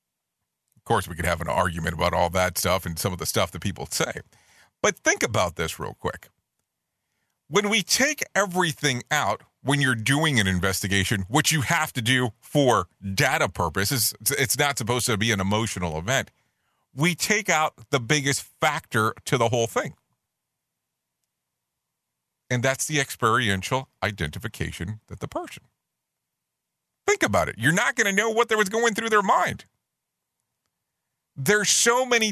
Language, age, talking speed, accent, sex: English, 40-59, 160 wpm, American, male